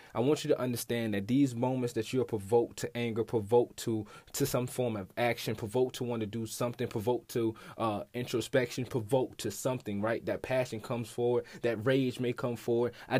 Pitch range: 120-140 Hz